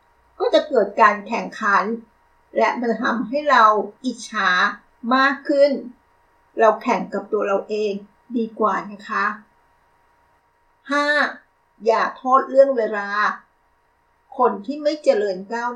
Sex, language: female, Thai